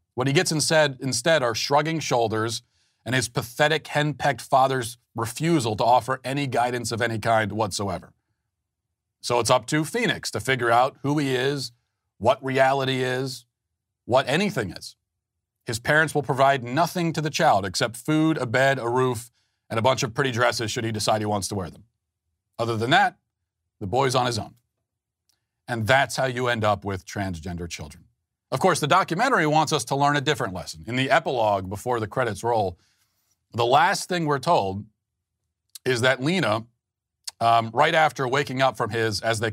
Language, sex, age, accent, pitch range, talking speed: English, male, 40-59, American, 105-135 Hz, 180 wpm